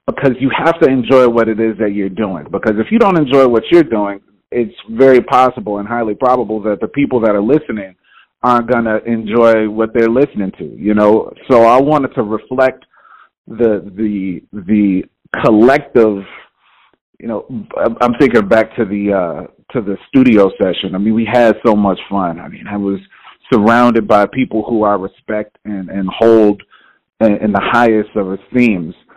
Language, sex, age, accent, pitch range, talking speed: English, male, 40-59, American, 110-135 Hz, 180 wpm